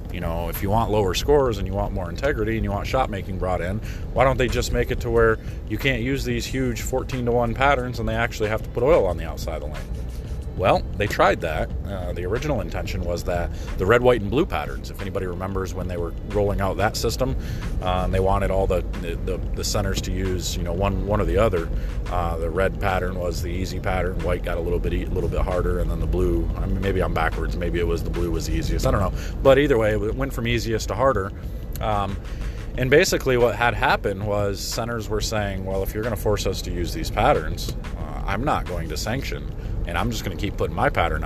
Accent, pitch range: American, 85-110 Hz